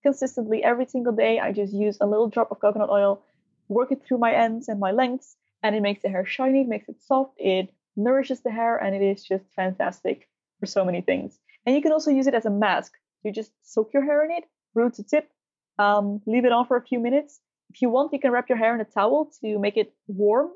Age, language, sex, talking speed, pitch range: 20-39, English, female, 250 wpm, 200-260 Hz